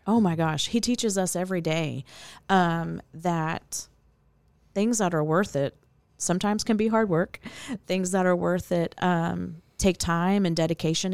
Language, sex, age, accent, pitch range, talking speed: English, female, 30-49, American, 165-190 Hz, 160 wpm